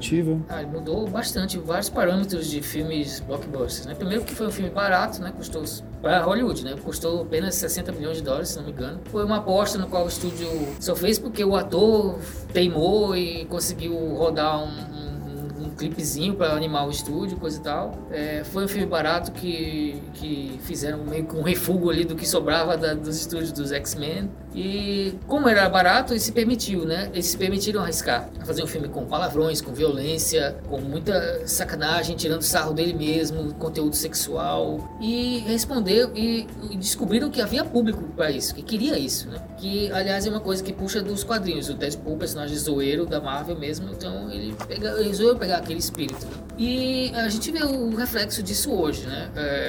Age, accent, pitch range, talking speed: 20-39, Brazilian, 150-200 Hz, 180 wpm